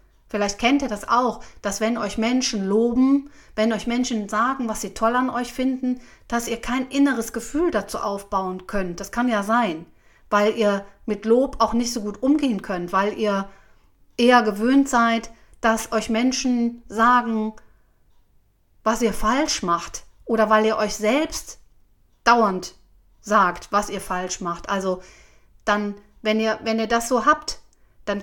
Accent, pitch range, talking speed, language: German, 205-250 Hz, 160 wpm, German